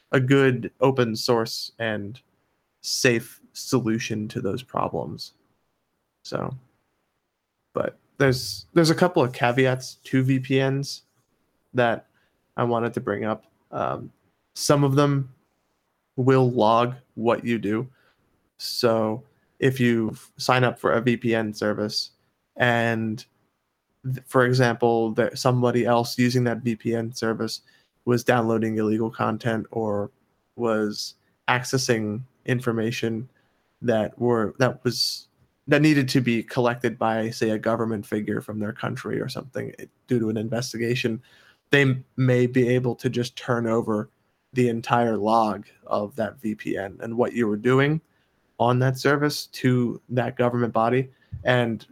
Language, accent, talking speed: English, American, 130 wpm